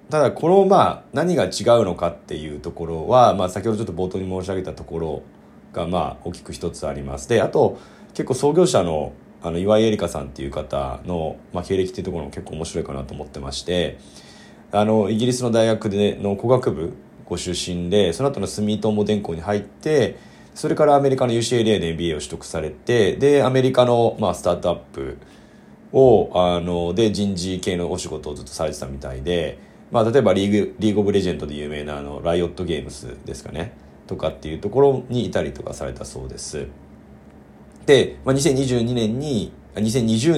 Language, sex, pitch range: Japanese, male, 80-110 Hz